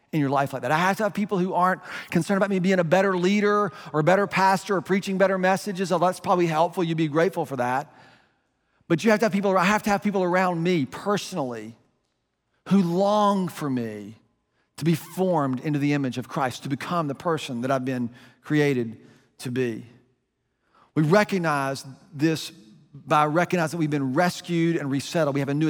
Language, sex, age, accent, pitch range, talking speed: English, male, 40-59, American, 140-185 Hz, 200 wpm